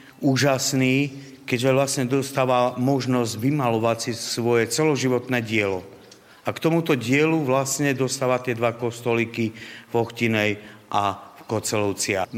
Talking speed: 115 wpm